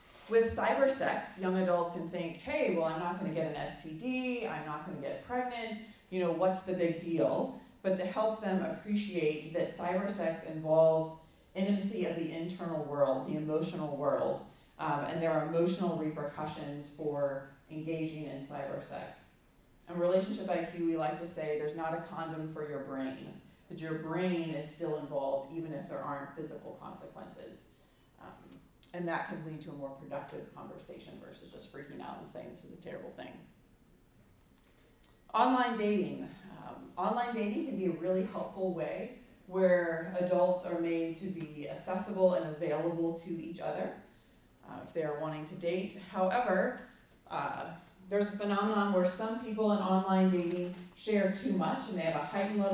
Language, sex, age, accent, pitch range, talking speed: English, female, 30-49, American, 160-190 Hz, 165 wpm